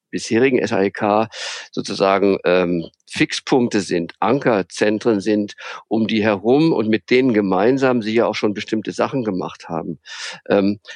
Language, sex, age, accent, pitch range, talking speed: German, male, 50-69, German, 100-115 Hz, 130 wpm